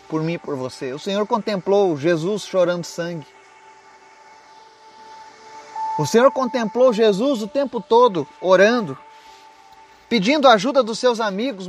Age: 30-49